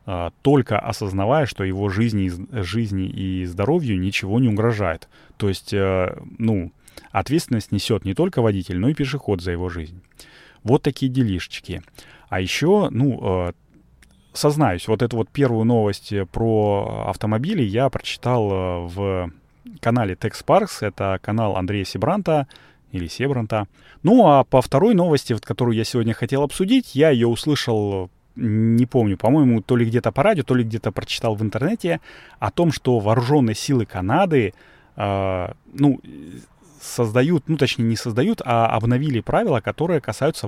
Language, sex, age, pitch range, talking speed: Russian, male, 30-49, 100-135 Hz, 140 wpm